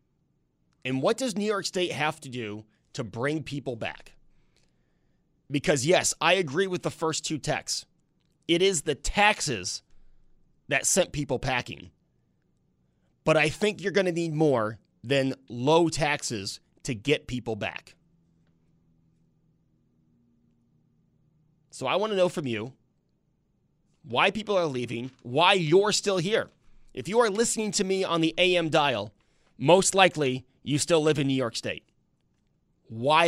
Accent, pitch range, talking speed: American, 125-175 Hz, 145 wpm